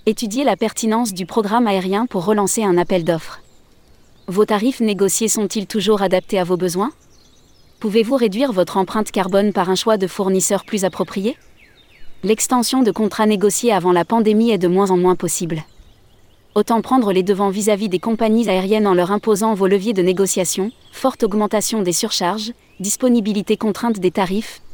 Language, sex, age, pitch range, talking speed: French, female, 30-49, 185-225 Hz, 165 wpm